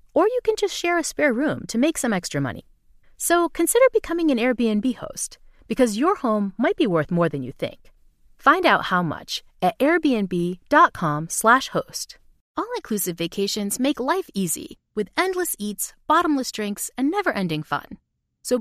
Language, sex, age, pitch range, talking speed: English, female, 30-49, 195-310 Hz, 165 wpm